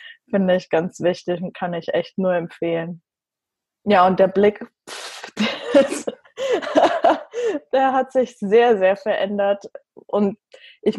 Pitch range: 195-250 Hz